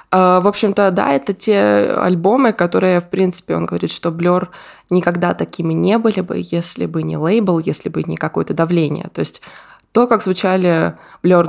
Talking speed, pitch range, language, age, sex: 170 wpm, 165-195 Hz, Russian, 20-39, female